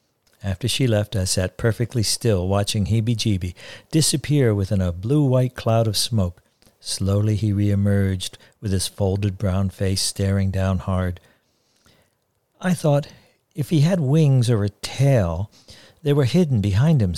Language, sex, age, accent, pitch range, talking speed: English, male, 60-79, American, 100-130 Hz, 145 wpm